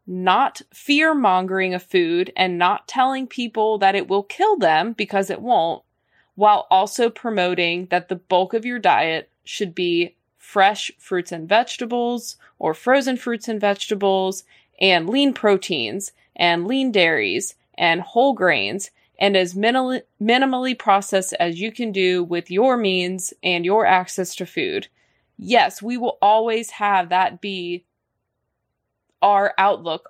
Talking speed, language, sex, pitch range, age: 140 wpm, English, female, 185-230 Hz, 20-39